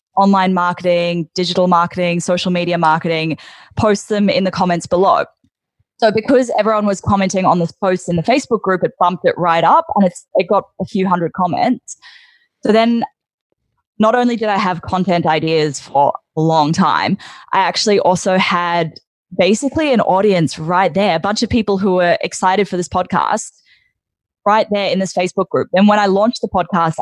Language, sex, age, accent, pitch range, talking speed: English, female, 20-39, Australian, 170-200 Hz, 180 wpm